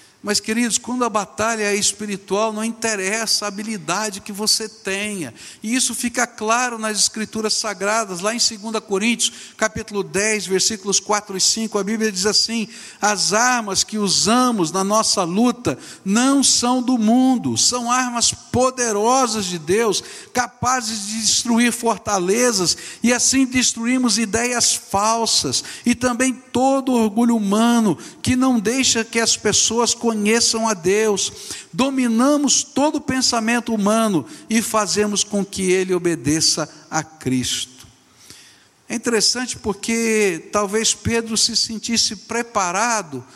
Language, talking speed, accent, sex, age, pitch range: Portuguese, 135 wpm, Brazilian, male, 60-79, 205-240 Hz